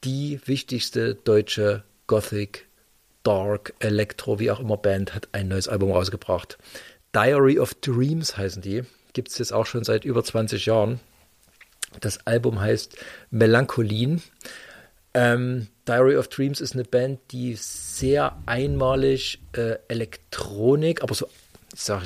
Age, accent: 40-59, German